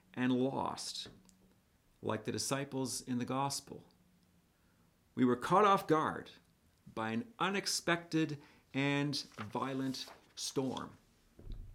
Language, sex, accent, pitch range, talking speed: English, male, American, 105-150 Hz, 95 wpm